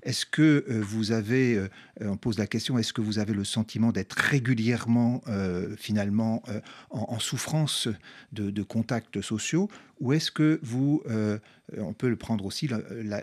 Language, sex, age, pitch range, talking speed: French, male, 40-59, 110-150 Hz, 170 wpm